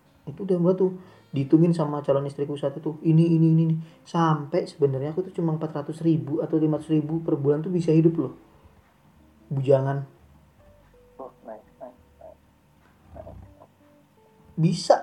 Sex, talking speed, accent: male, 125 wpm, native